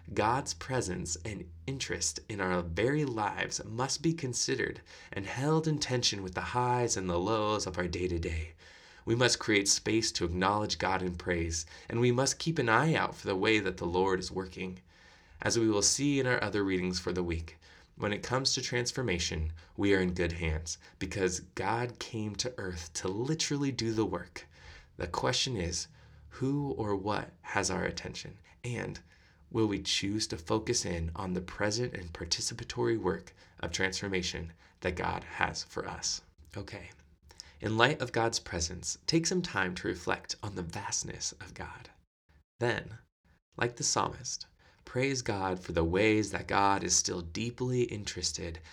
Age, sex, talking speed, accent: 20-39, male, 170 wpm, American